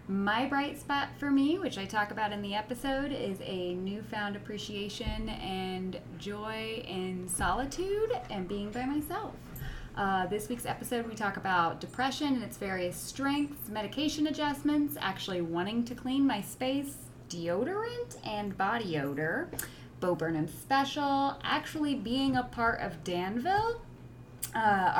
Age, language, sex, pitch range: 10-29, English, female, 190-275 Hz